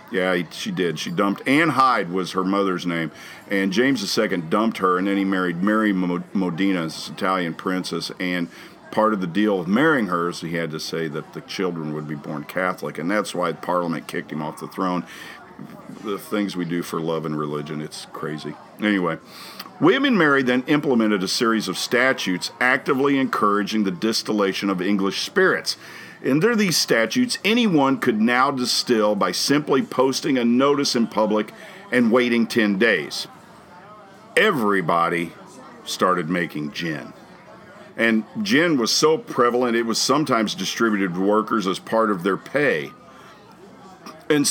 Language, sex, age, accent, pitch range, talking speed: English, male, 50-69, American, 90-130 Hz, 160 wpm